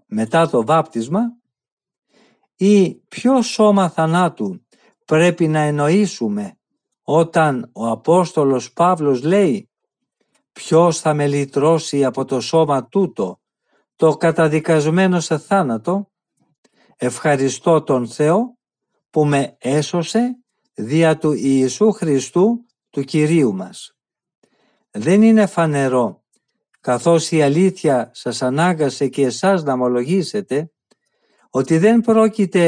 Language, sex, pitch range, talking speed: Greek, male, 140-190 Hz, 100 wpm